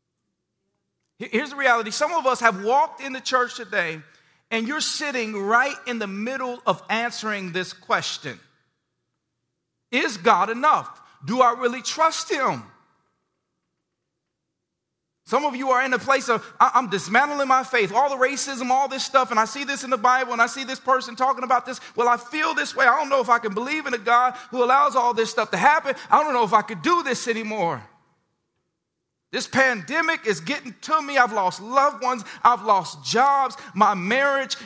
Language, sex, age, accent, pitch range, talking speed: English, male, 40-59, American, 210-265 Hz, 190 wpm